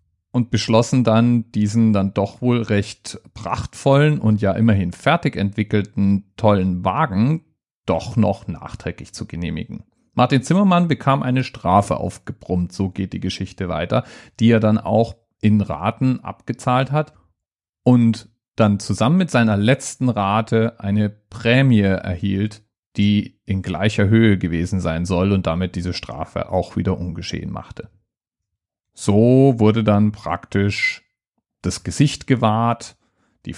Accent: German